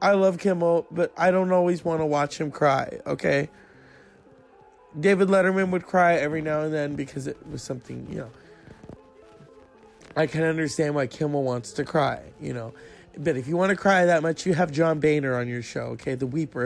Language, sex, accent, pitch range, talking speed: English, male, American, 135-165 Hz, 200 wpm